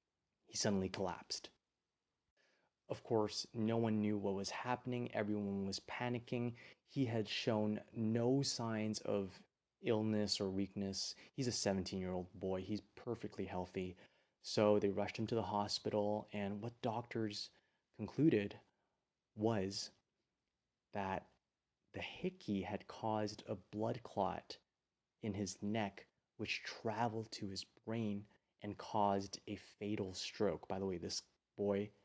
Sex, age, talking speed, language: male, 30-49, 130 wpm, English